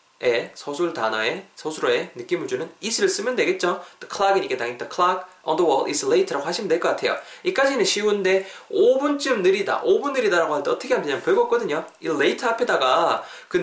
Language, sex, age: Korean, male, 20-39